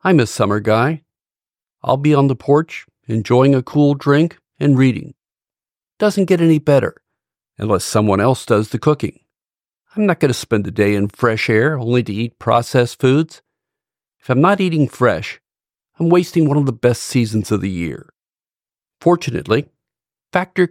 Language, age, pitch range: English, 50-69, 115-155 Hz